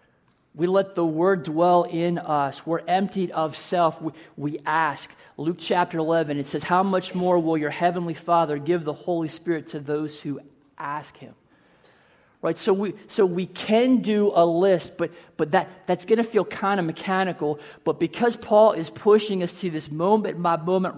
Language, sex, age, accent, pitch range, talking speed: English, male, 40-59, American, 155-185 Hz, 175 wpm